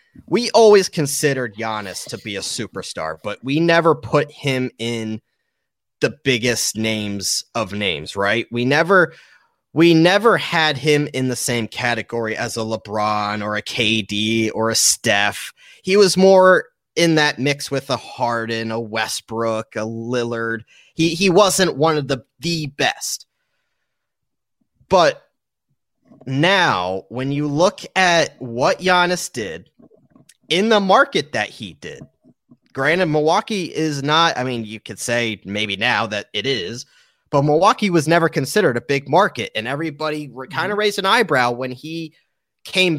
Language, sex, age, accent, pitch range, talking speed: English, male, 30-49, American, 115-170 Hz, 150 wpm